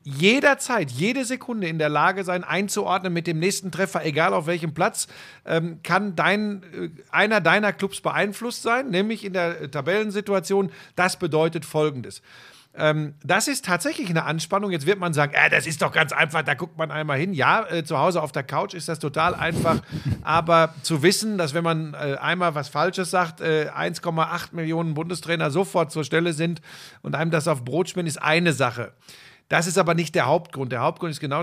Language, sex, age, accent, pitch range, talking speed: German, male, 50-69, German, 150-180 Hz, 195 wpm